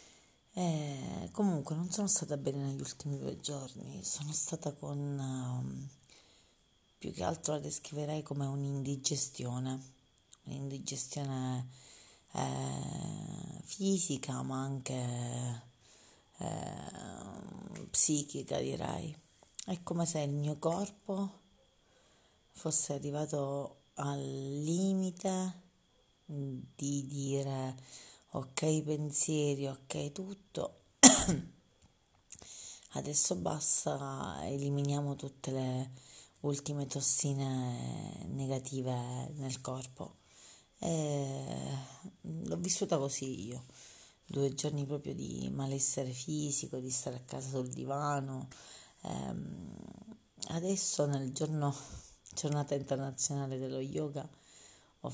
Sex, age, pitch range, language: female, 30-49, 130-155 Hz, Italian